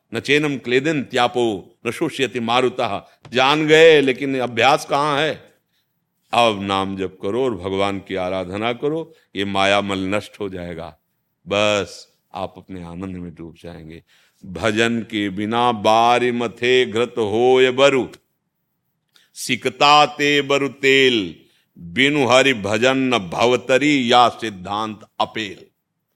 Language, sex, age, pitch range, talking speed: Hindi, male, 50-69, 95-120 Hz, 130 wpm